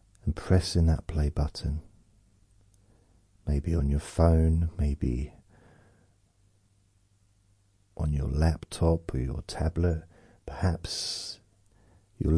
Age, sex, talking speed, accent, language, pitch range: 50-69, male, 85 wpm, British, English, 80-100 Hz